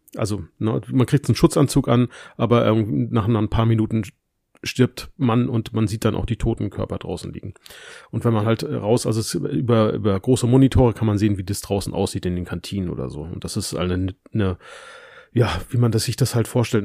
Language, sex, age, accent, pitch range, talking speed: German, male, 30-49, German, 110-130 Hz, 205 wpm